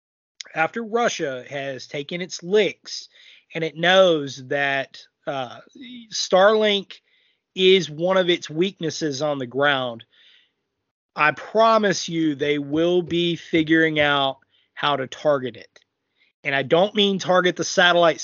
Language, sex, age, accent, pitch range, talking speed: English, male, 30-49, American, 145-175 Hz, 130 wpm